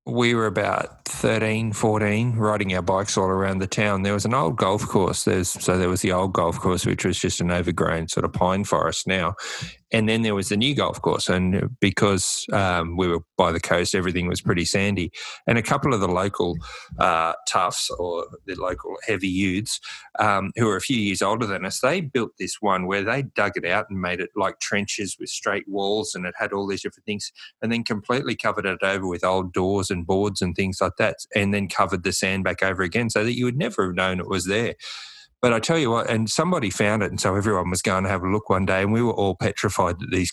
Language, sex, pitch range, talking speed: English, male, 95-110 Hz, 240 wpm